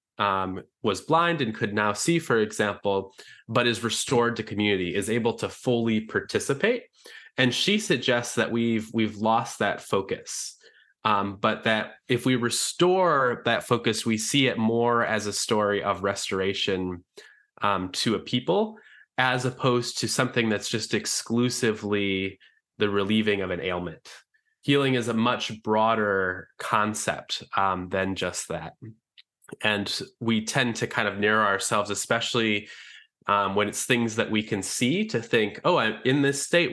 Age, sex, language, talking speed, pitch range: 20-39, male, English, 155 wpm, 105-125 Hz